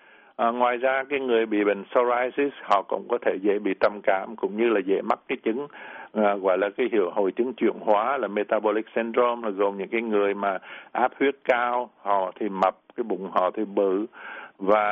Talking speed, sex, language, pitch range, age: 215 wpm, male, Vietnamese, 105-125 Hz, 60-79